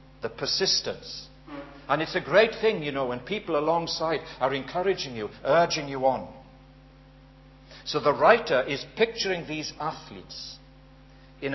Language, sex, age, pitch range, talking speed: English, male, 60-79, 130-175 Hz, 135 wpm